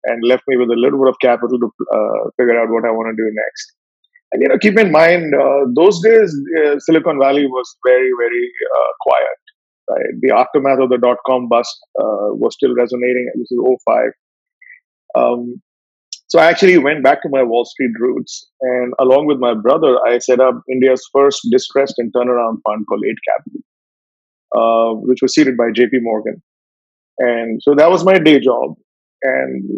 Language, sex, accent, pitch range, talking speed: English, male, Indian, 125-180 Hz, 185 wpm